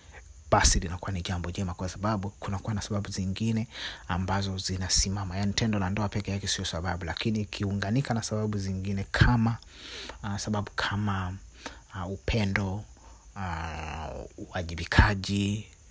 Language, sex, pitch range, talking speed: Swahili, male, 85-105 Hz, 125 wpm